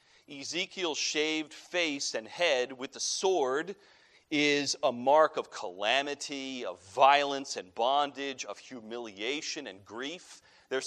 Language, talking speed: English, 120 wpm